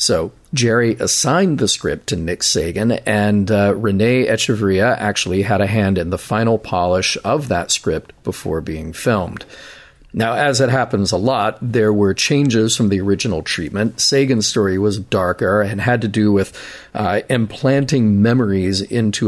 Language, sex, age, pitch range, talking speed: English, male, 40-59, 90-115 Hz, 160 wpm